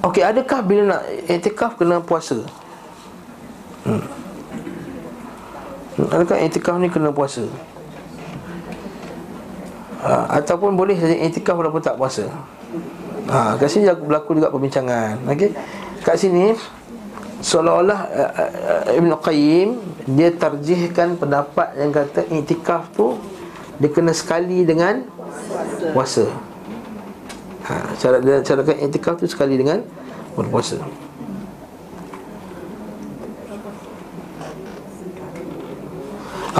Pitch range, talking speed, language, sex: 135-175 Hz, 95 wpm, Malay, male